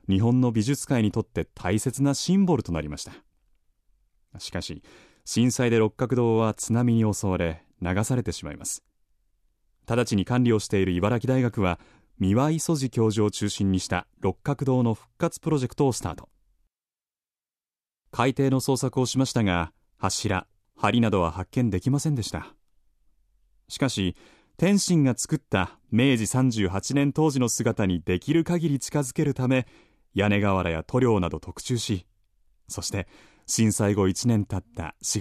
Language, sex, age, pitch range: Japanese, male, 30-49, 95-130 Hz